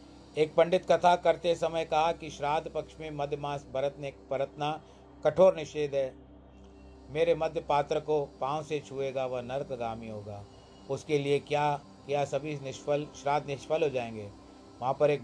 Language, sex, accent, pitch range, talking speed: Hindi, male, native, 130-155 Hz, 160 wpm